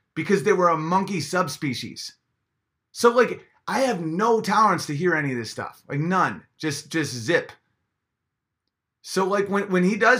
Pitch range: 120-165 Hz